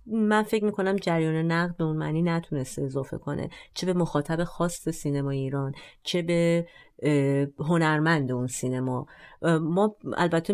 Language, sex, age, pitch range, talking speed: Persian, female, 30-49, 145-180 Hz, 135 wpm